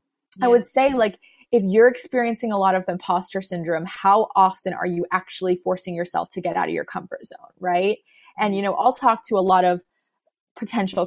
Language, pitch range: English, 190-260 Hz